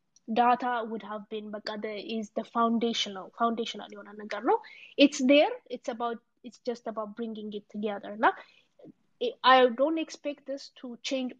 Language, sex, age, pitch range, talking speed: Amharic, female, 20-39, 225-265 Hz, 140 wpm